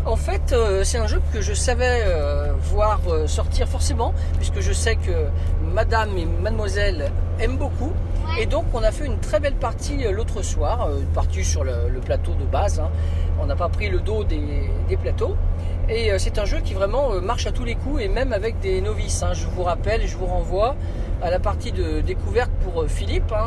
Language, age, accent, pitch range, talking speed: French, 40-59, French, 75-85 Hz, 195 wpm